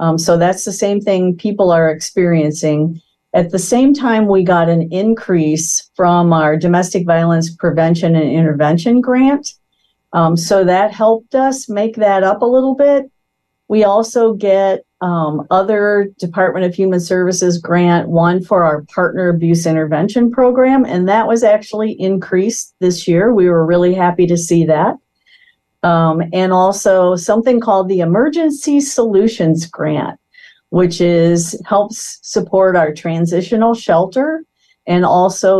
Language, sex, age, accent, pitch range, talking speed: English, female, 50-69, American, 170-215 Hz, 145 wpm